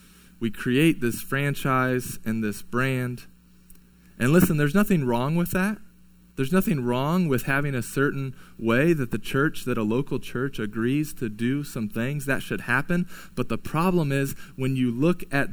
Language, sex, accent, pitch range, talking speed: English, male, American, 100-145 Hz, 175 wpm